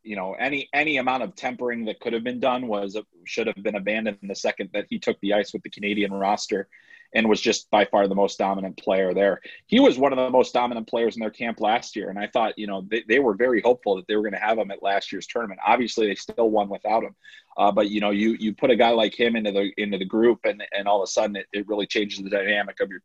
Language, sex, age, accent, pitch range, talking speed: English, male, 30-49, American, 110-150 Hz, 285 wpm